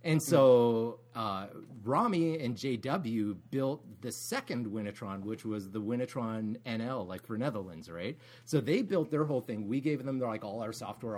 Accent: American